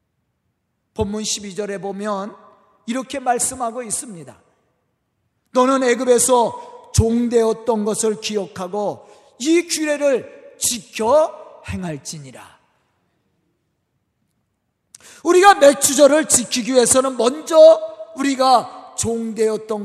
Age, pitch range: 40-59, 230-325 Hz